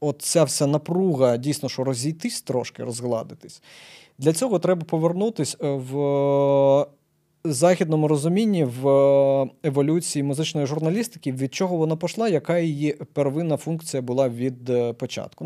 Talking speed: 115 wpm